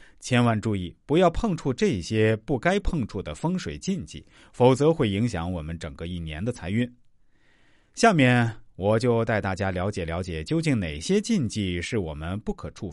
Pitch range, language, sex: 90-135 Hz, Chinese, male